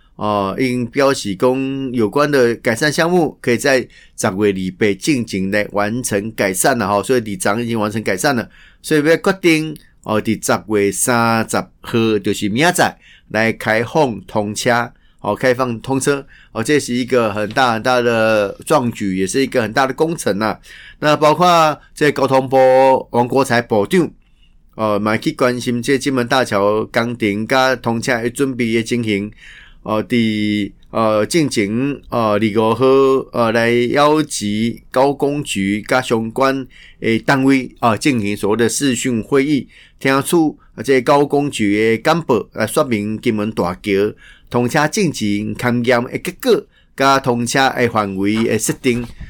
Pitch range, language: 110-135 Hz, Chinese